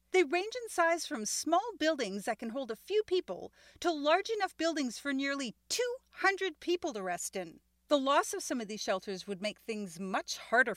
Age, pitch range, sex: 40-59, 225-335 Hz, female